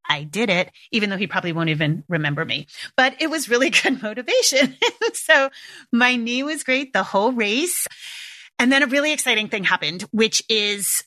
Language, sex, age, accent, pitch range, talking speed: English, female, 30-49, American, 185-260 Hz, 185 wpm